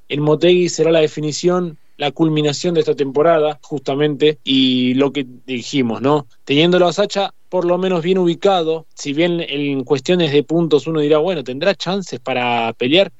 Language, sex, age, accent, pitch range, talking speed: Spanish, male, 20-39, Argentinian, 140-175 Hz, 170 wpm